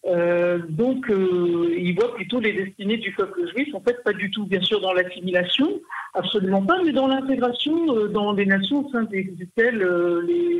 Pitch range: 190-255 Hz